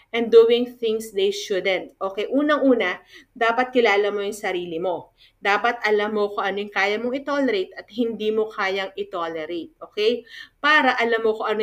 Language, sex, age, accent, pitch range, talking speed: Filipino, female, 40-59, native, 195-255 Hz, 170 wpm